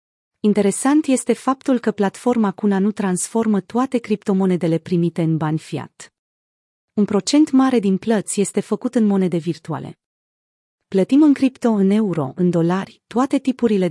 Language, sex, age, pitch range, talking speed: Romanian, female, 30-49, 170-230 Hz, 140 wpm